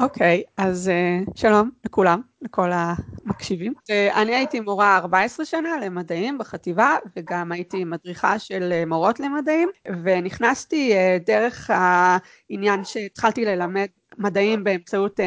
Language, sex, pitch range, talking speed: Hebrew, female, 185-225 Hz, 120 wpm